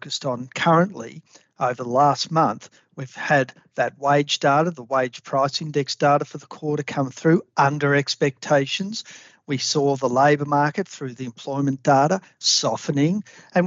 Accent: Australian